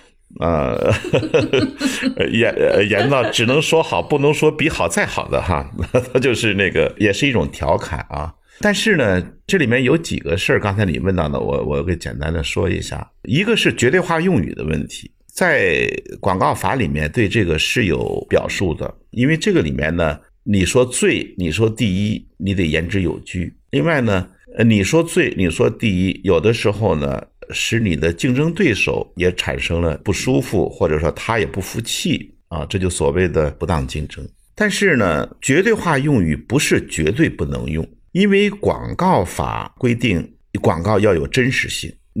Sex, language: male, Chinese